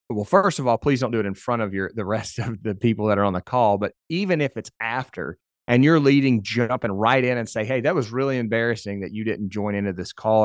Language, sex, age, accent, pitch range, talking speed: English, male, 30-49, American, 105-125 Hz, 270 wpm